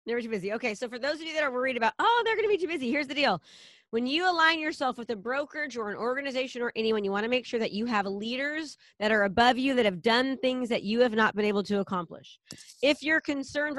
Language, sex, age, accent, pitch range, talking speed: English, female, 30-49, American, 210-260 Hz, 275 wpm